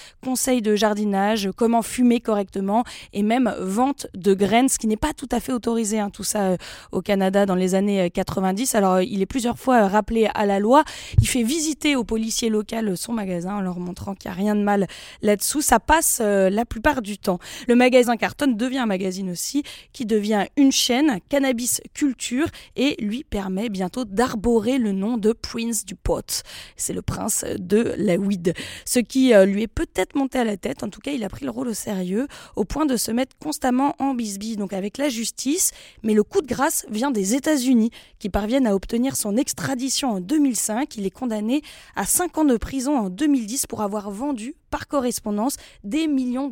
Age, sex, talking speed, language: 20-39, female, 205 wpm, French